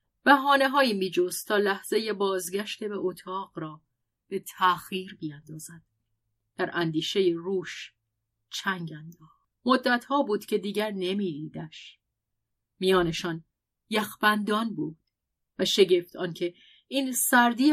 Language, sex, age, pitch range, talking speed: Persian, female, 30-49, 175-245 Hz, 100 wpm